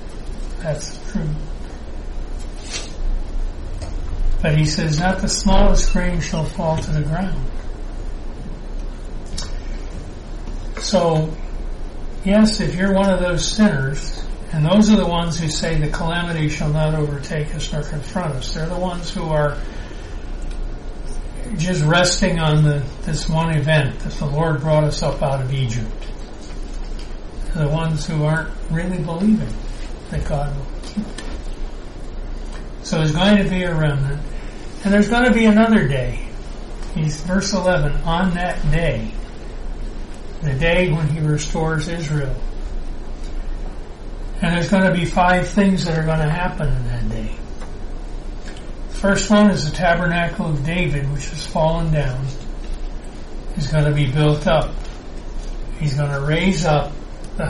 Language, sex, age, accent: English, male, 60-79, American